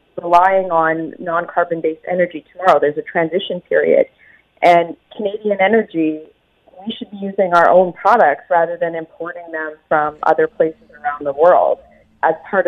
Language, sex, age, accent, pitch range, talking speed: English, female, 30-49, American, 175-235 Hz, 150 wpm